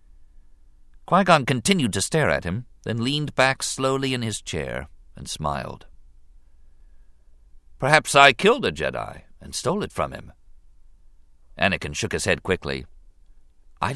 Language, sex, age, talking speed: English, male, 50-69, 135 wpm